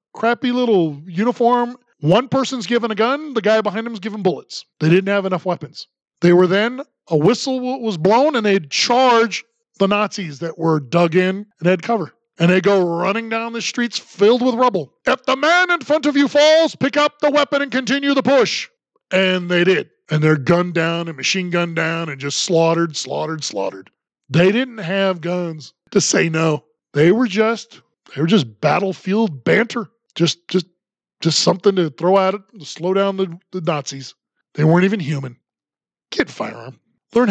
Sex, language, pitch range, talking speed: male, English, 165-225 Hz, 190 wpm